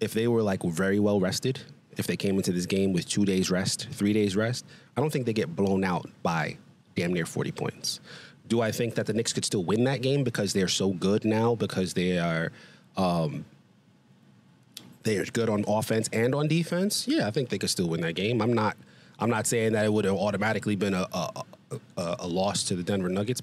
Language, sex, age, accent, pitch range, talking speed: English, male, 30-49, American, 100-120 Hz, 230 wpm